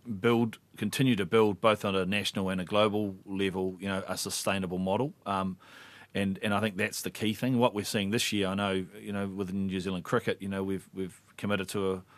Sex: male